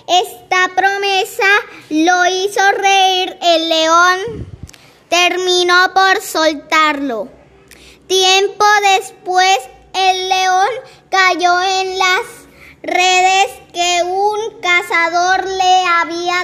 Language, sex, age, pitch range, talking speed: Spanish, male, 20-39, 355-390 Hz, 85 wpm